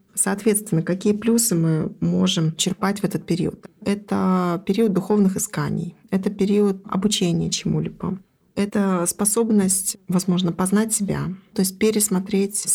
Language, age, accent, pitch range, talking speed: Russian, 20-39, native, 175-200 Hz, 120 wpm